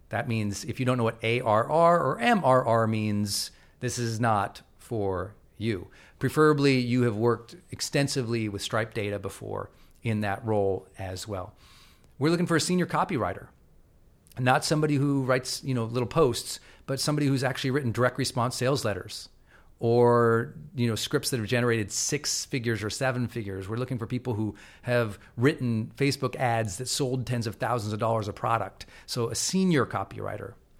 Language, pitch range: English, 110-140 Hz